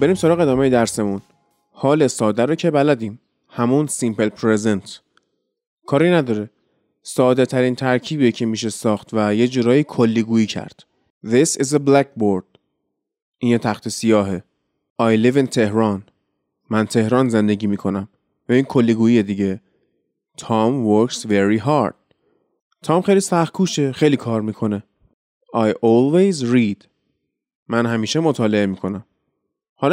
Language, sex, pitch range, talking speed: Persian, male, 110-145 Hz, 130 wpm